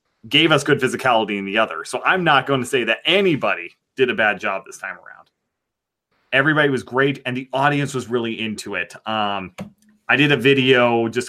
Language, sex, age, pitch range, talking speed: English, male, 30-49, 110-140 Hz, 200 wpm